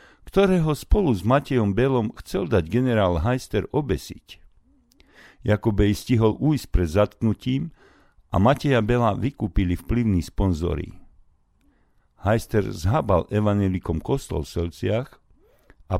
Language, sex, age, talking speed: Slovak, male, 50-69, 105 wpm